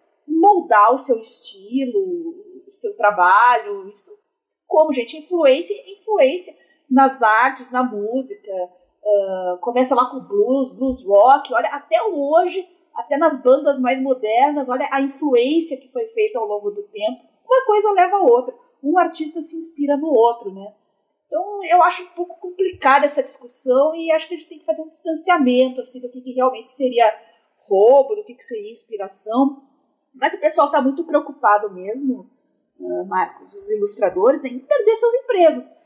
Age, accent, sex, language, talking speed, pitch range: 40-59, Brazilian, female, Portuguese, 160 wpm, 250-335 Hz